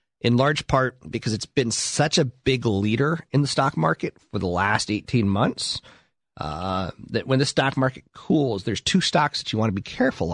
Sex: male